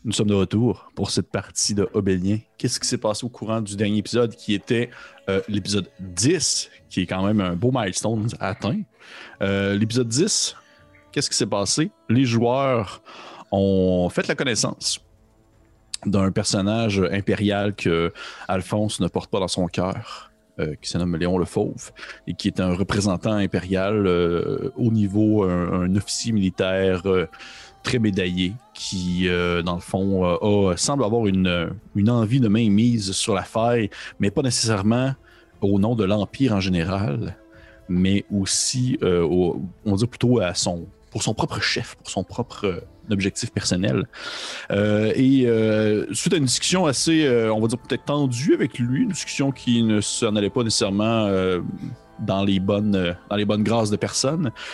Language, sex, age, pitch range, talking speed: French, male, 30-49, 95-115 Hz, 170 wpm